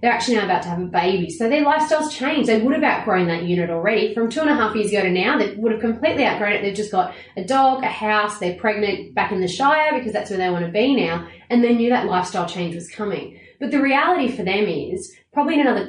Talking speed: 270 wpm